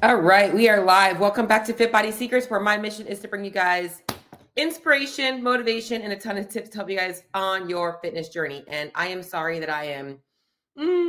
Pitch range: 140-195 Hz